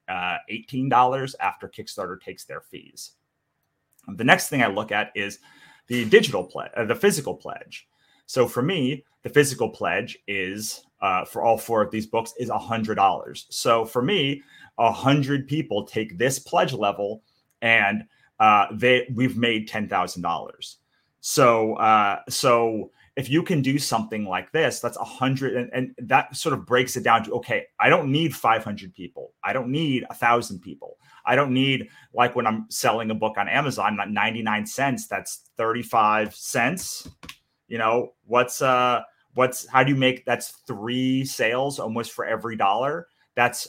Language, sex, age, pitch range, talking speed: English, male, 30-49, 110-135 Hz, 170 wpm